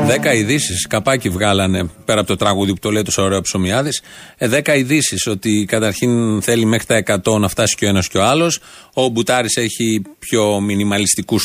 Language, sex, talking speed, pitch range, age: Greek, male, 185 wpm, 105-140 Hz, 30-49